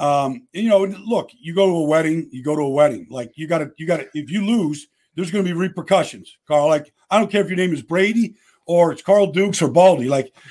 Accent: American